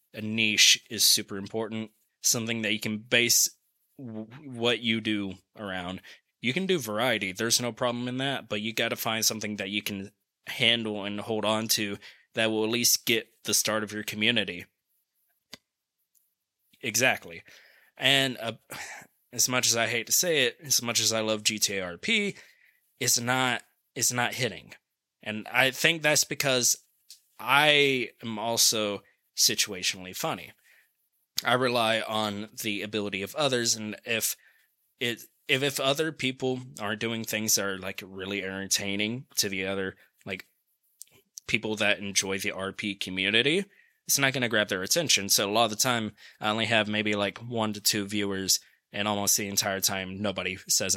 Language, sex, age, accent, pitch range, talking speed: English, male, 20-39, American, 105-120 Hz, 165 wpm